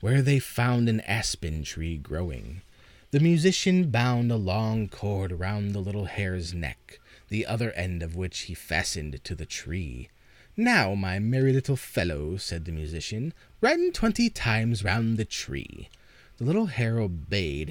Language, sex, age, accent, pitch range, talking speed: English, male, 30-49, American, 85-115 Hz, 155 wpm